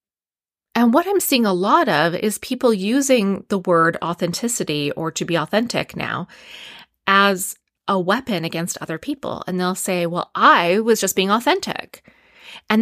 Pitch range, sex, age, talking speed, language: 170-225 Hz, female, 30-49, 160 wpm, English